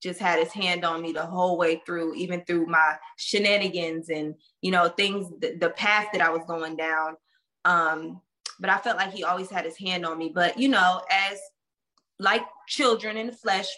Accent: American